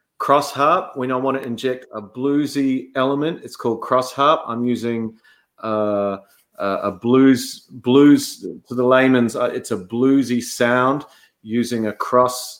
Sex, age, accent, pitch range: male, 30-49, Australian, 115-130 Hz